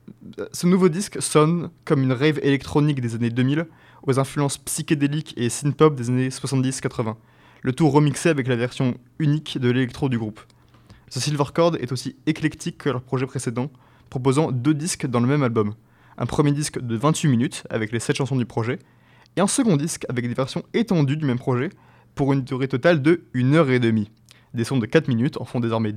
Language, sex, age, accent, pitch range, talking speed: French, male, 20-39, French, 125-150 Hz, 200 wpm